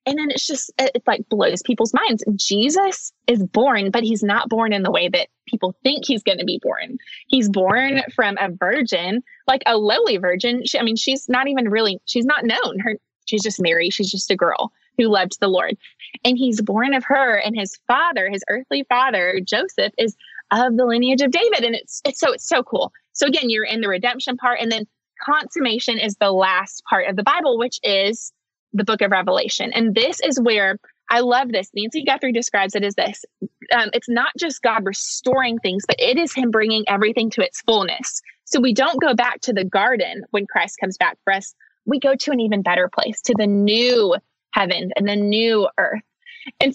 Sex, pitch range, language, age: female, 205-260 Hz, English, 20-39